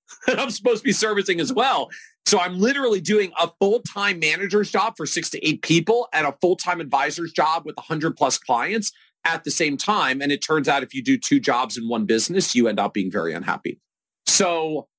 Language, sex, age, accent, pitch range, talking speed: English, male, 40-59, American, 135-180 Hz, 210 wpm